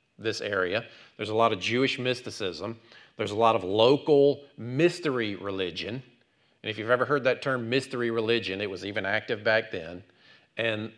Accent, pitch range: American, 100-130 Hz